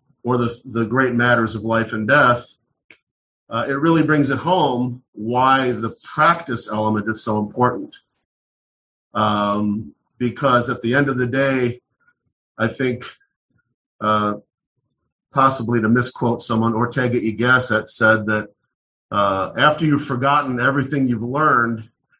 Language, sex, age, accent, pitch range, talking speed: English, male, 40-59, American, 115-135 Hz, 130 wpm